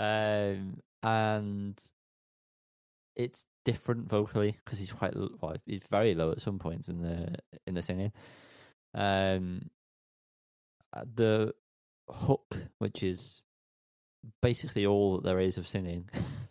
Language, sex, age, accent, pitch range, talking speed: English, male, 30-49, British, 95-115 Hz, 115 wpm